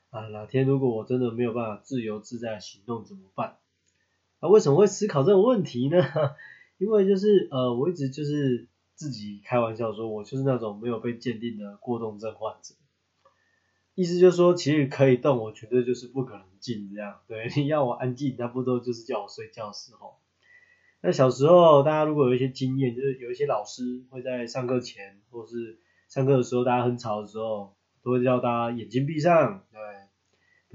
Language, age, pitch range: Chinese, 20-39, 110-140 Hz